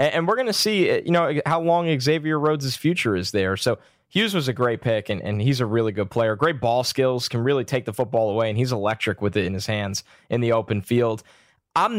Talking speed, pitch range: 245 wpm, 115-155 Hz